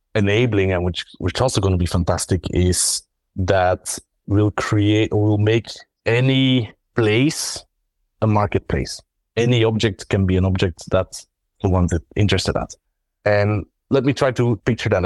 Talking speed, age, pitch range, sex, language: 150 wpm, 30-49, 95-120 Hz, male, English